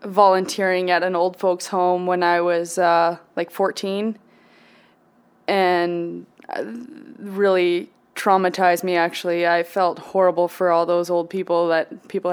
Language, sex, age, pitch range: English, female, 20-39, 180-200 Hz